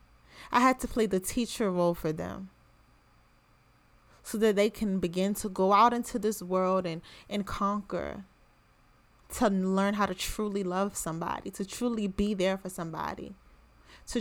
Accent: American